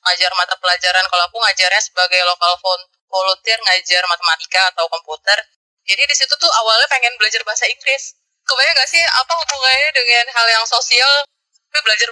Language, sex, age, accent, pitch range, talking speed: Indonesian, female, 20-39, native, 195-250 Hz, 165 wpm